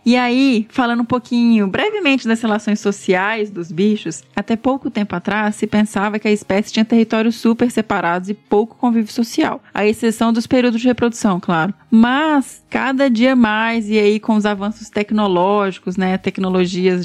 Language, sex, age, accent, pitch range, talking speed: Portuguese, female, 20-39, Brazilian, 195-230 Hz, 165 wpm